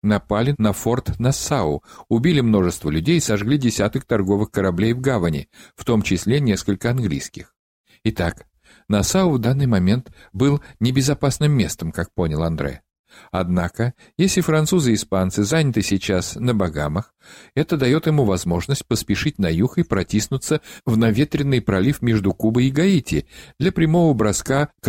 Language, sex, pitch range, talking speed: Russian, male, 95-140 Hz, 140 wpm